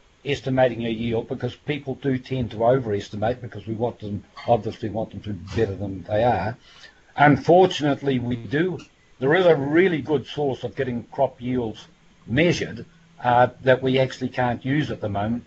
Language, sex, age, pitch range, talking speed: English, male, 60-79, 110-140 Hz, 175 wpm